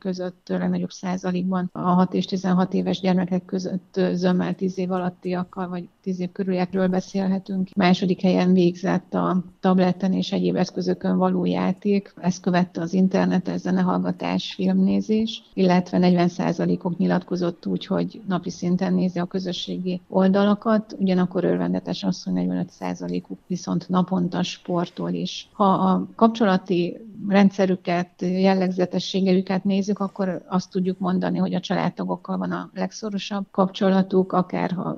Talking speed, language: 135 wpm, Hungarian